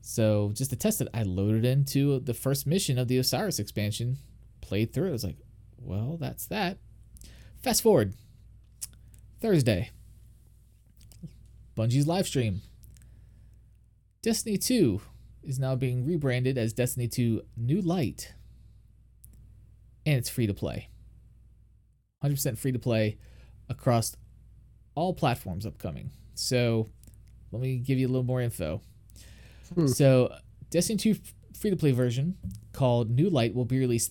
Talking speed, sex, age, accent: 130 wpm, male, 20-39, American